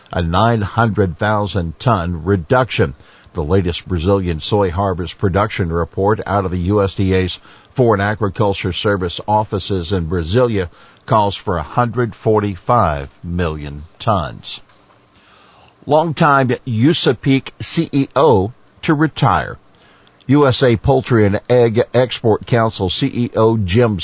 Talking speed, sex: 95 wpm, male